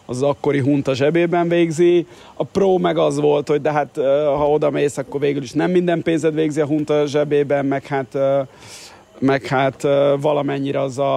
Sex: male